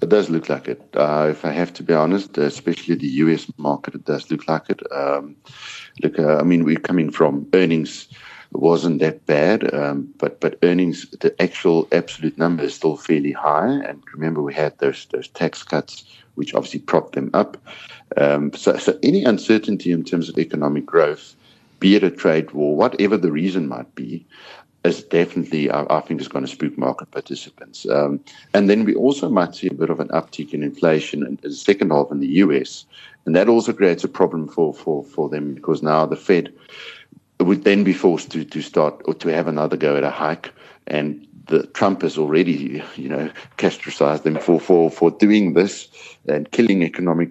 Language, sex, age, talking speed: English, male, 60-79, 195 wpm